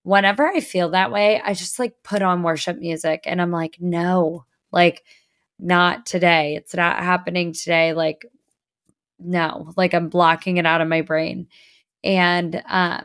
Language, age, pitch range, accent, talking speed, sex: English, 20-39, 170-195 Hz, American, 160 wpm, female